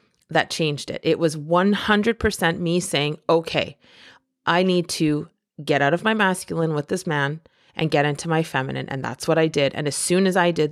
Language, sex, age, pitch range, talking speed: English, female, 30-49, 155-195 Hz, 200 wpm